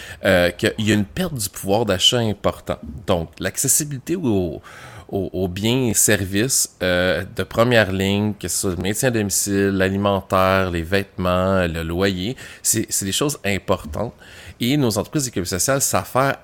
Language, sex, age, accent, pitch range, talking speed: French, male, 30-49, Canadian, 90-110 Hz, 165 wpm